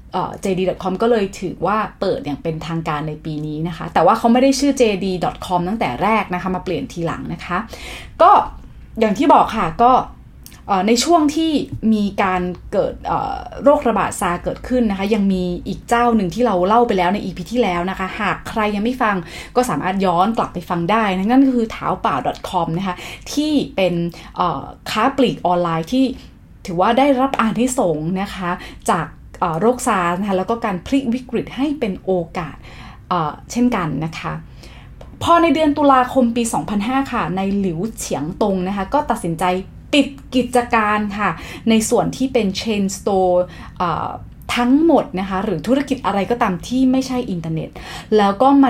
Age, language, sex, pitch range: 20-39, English, female, 180-245 Hz